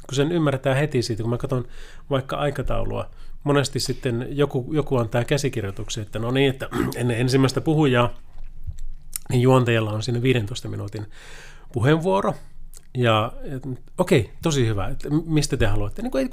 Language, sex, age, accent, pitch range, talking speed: Finnish, male, 30-49, native, 110-145 Hz, 145 wpm